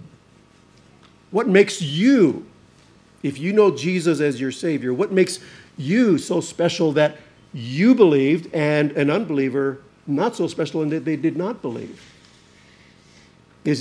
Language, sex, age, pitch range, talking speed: English, male, 50-69, 145-200 Hz, 135 wpm